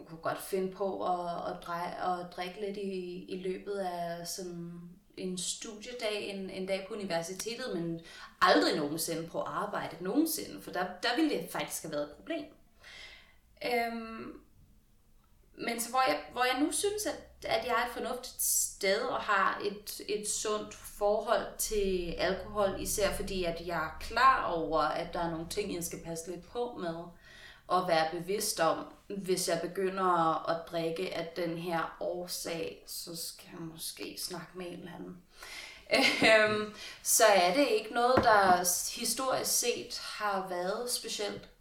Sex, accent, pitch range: female, native, 170-215 Hz